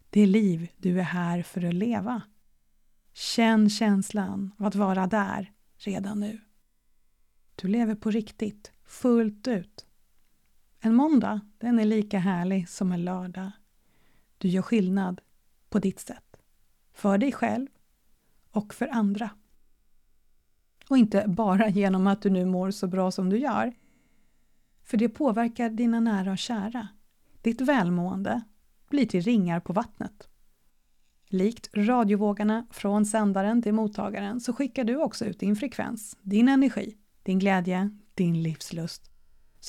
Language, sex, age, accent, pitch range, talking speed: Swedish, female, 30-49, native, 190-230 Hz, 135 wpm